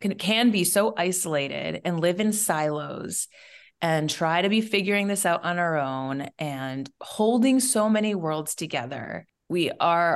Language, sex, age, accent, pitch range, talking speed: English, female, 30-49, American, 160-200 Hz, 155 wpm